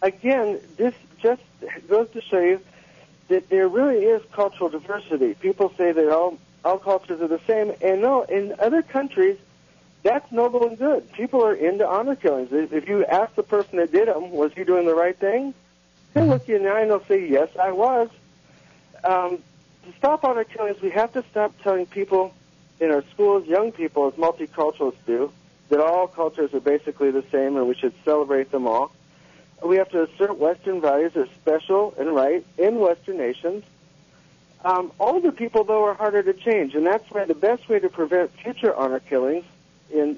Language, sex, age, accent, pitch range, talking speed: English, male, 60-79, American, 160-215 Hz, 190 wpm